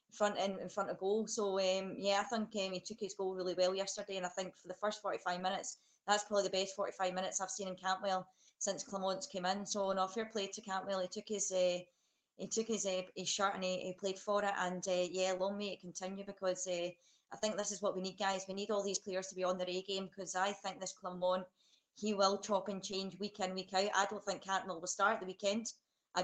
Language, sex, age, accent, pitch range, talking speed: English, female, 20-39, British, 185-200 Hz, 270 wpm